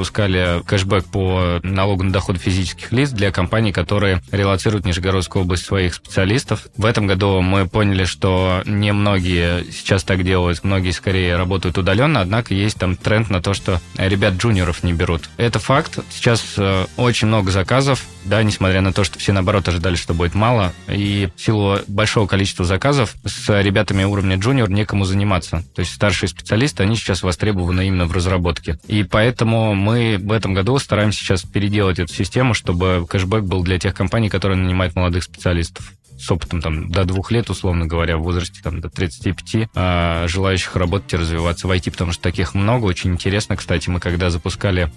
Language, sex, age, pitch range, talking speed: Russian, male, 20-39, 90-105 Hz, 170 wpm